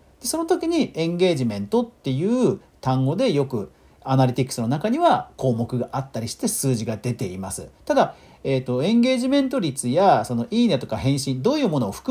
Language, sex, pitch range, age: Japanese, male, 125-205 Hz, 40-59